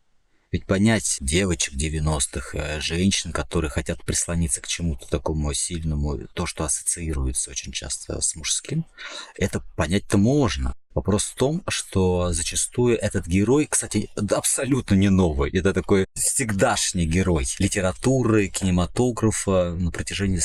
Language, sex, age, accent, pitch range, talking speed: Russian, male, 30-49, native, 80-100 Hz, 120 wpm